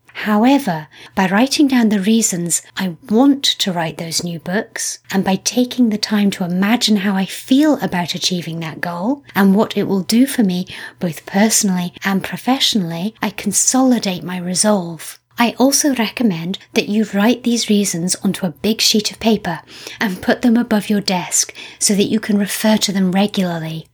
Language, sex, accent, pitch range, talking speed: English, female, British, 185-225 Hz, 175 wpm